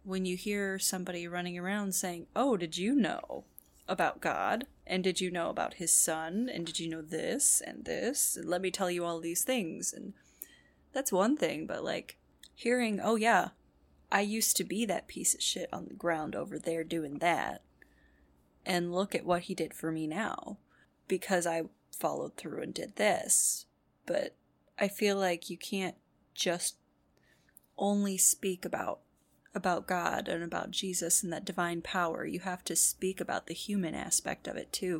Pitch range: 170-205 Hz